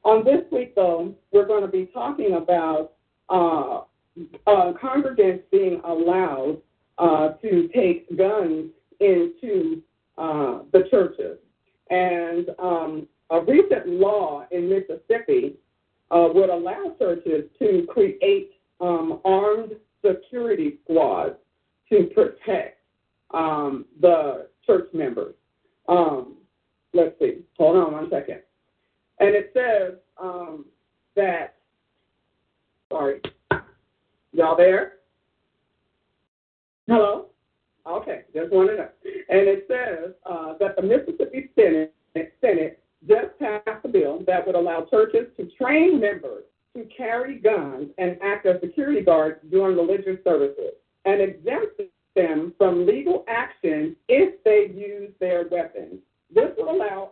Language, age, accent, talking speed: English, 50-69, American, 120 wpm